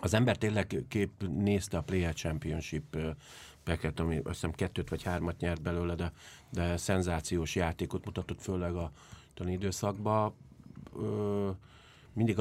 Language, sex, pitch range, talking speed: English, male, 80-95 Hz, 125 wpm